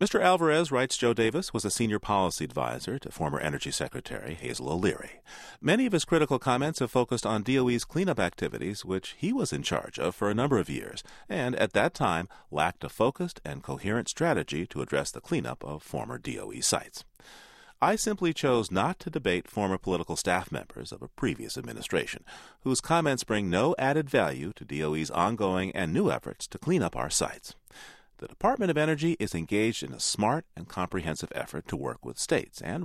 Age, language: 40-59, English